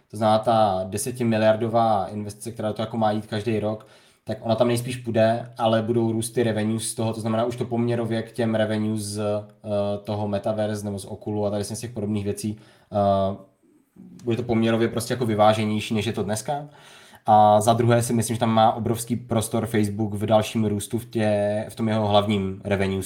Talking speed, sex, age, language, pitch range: 200 wpm, male, 20-39, Slovak, 105-120 Hz